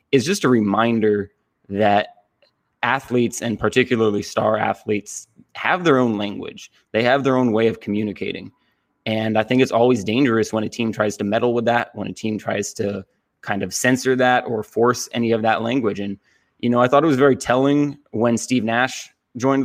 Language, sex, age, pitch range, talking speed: English, male, 20-39, 105-125 Hz, 190 wpm